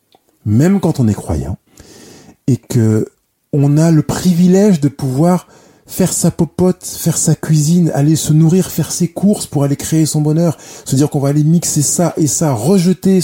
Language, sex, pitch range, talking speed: French, male, 120-165 Hz, 180 wpm